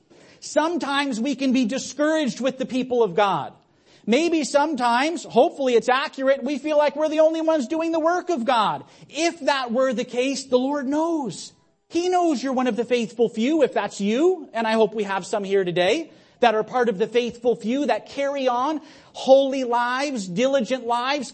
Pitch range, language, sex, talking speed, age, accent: 195-270 Hz, English, male, 190 wpm, 40-59, American